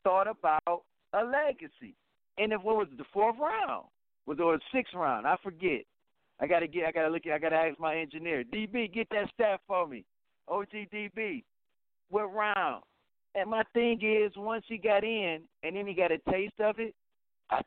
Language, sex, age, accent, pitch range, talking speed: English, male, 50-69, American, 135-190 Hz, 195 wpm